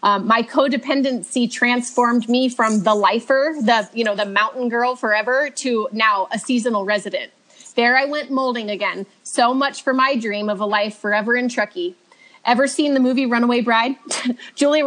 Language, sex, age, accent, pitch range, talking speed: English, female, 30-49, American, 210-265 Hz, 175 wpm